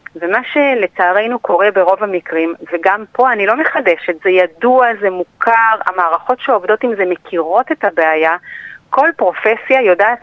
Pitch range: 180-245 Hz